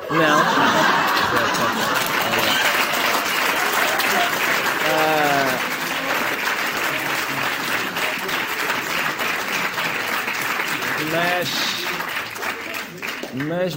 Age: 20-39